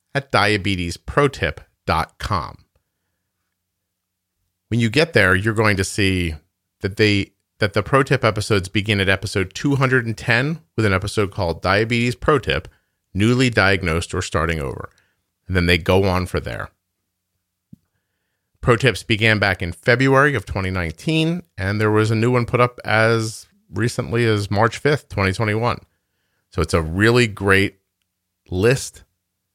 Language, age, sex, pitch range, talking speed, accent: English, 40-59, male, 90-115 Hz, 140 wpm, American